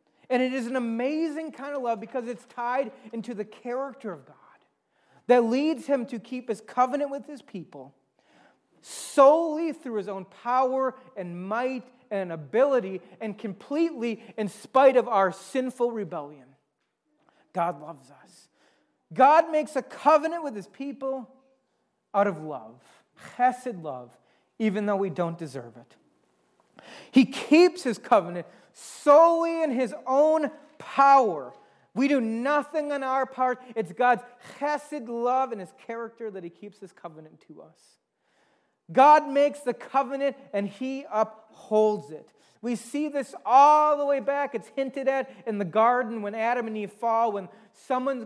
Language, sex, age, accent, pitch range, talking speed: English, male, 30-49, American, 210-270 Hz, 150 wpm